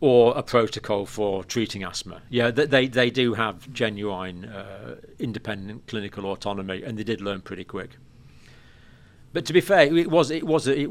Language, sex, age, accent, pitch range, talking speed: English, male, 50-69, British, 105-130 Hz, 170 wpm